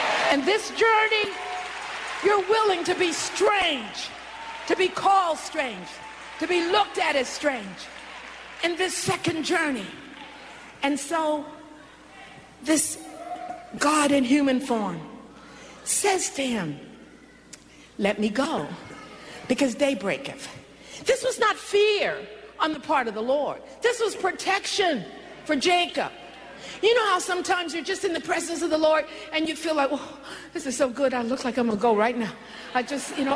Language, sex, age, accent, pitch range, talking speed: English, female, 50-69, American, 275-345 Hz, 155 wpm